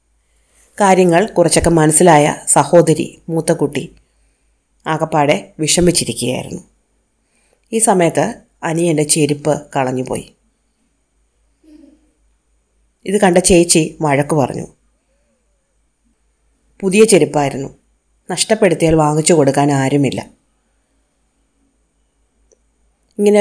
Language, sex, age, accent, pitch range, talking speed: Malayalam, female, 30-49, native, 135-175 Hz, 60 wpm